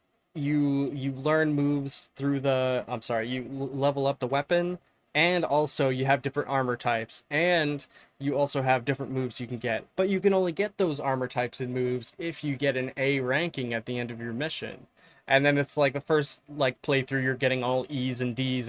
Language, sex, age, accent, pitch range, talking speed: English, male, 20-39, American, 125-145 Hz, 210 wpm